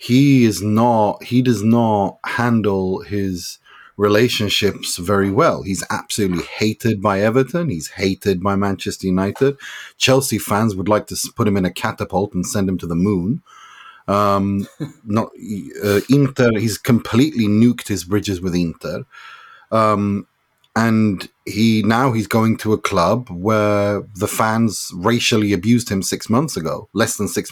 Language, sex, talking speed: English, male, 150 wpm